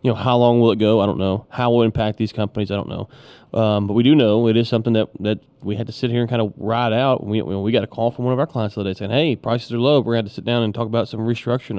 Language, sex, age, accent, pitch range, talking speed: English, male, 20-39, American, 105-125 Hz, 350 wpm